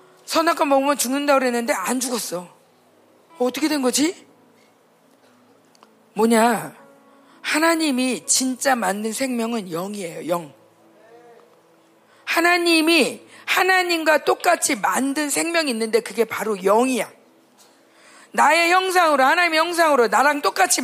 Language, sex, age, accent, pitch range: Korean, female, 40-59, native, 250-330 Hz